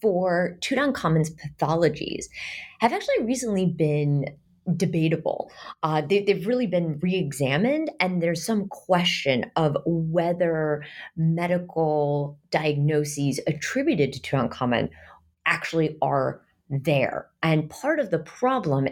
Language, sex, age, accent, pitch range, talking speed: English, female, 30-49, American, 145-180 Hz, 110 wpm